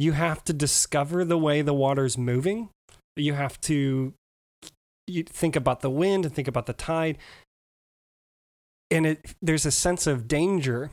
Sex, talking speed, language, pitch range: male, 165 wpm, English, 130-165 Hz